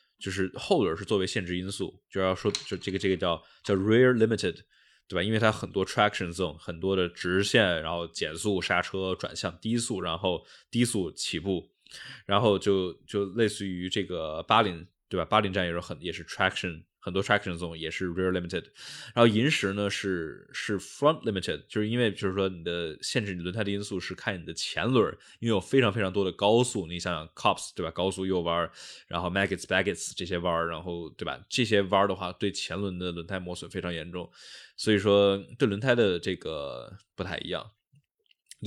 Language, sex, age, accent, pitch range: Chinese, male, 10-29, native, 90-105 Hz